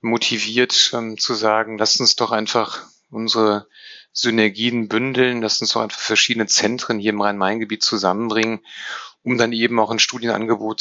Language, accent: German, German